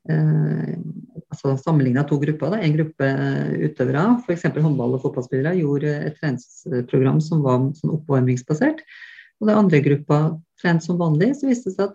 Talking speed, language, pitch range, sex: 145 wpm, English, 140-180 Hz, female